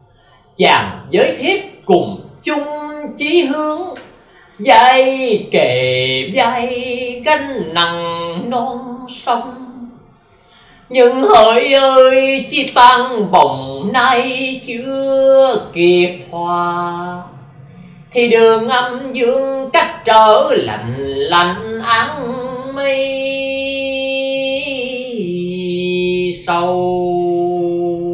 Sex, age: male, 20-39